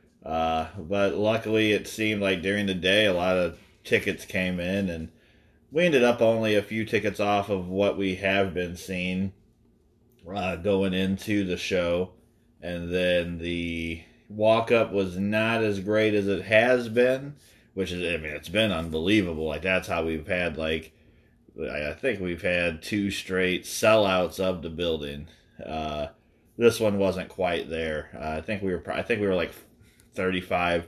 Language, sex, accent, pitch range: English, male, American, 85-110 Hz